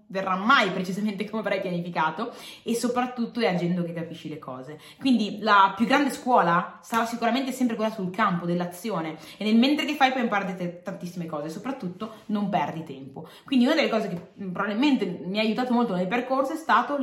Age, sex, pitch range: 20-39, female, 180-260 Hz